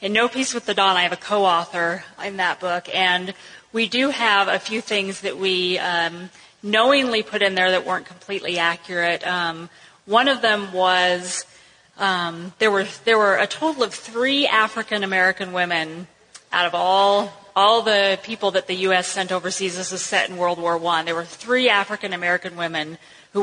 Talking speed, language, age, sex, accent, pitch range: 180 wpm, English, 30-49, female, American, 180-210 Hz